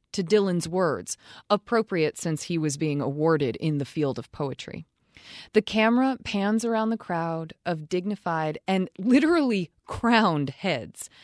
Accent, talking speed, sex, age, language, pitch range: American, 140 wpm, female, 20-39, English, 155-210 Hz